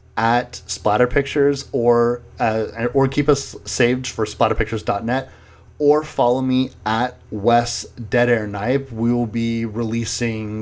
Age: 30-49